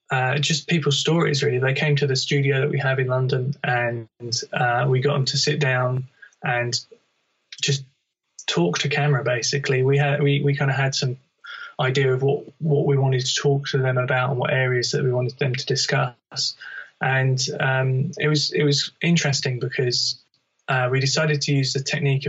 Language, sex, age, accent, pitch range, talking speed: English, male, 20-39, British, 130-145 Hz, 195 wpm